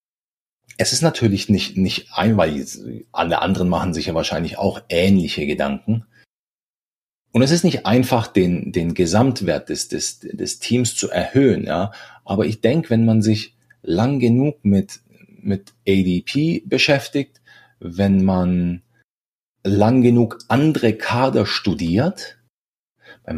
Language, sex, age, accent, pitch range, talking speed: German, male, 40-59, German, 95-125 Hz, 130 wpm